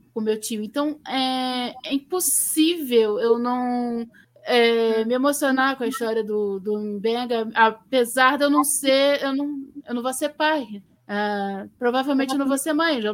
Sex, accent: female, Brazilian